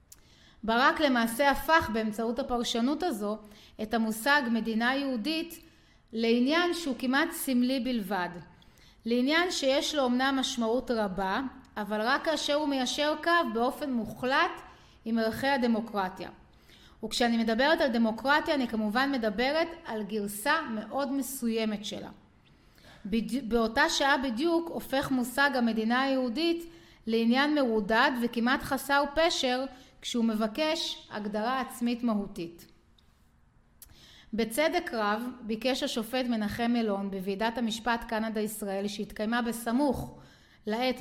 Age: 30-49